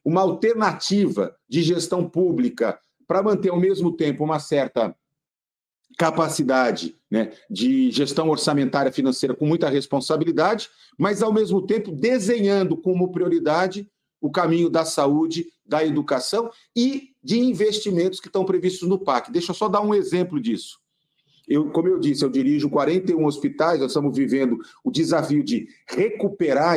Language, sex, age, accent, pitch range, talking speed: Portuguese, male, 50-69, Brazilian, 150-205 Hz, 145 wpm